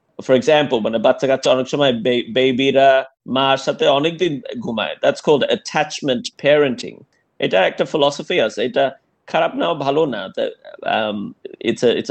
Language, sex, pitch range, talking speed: Bengali, male, 130-160 Hz, 60 wpm